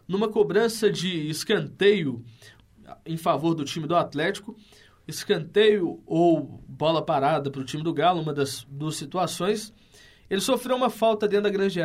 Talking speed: 150 wpm